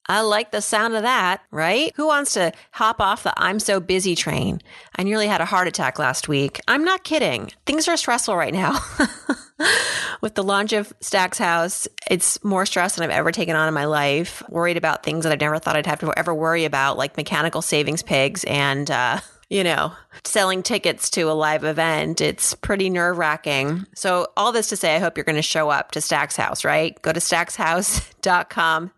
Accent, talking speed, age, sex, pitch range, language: American, 205 wpm, 30-49, female, 160-200 Hz, English